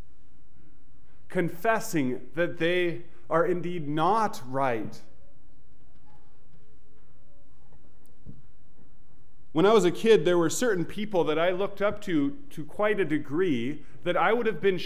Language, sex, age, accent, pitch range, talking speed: English, male, 30-49, American, 125-180 Hz, 120 wpm